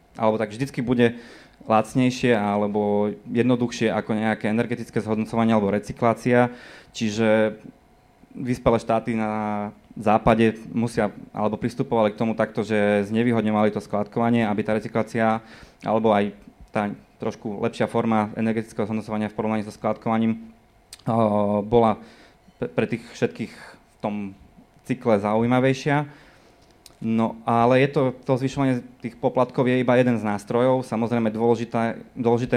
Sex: male